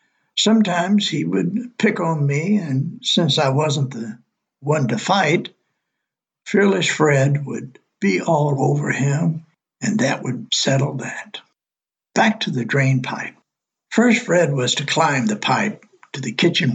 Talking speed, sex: 145 wpm, male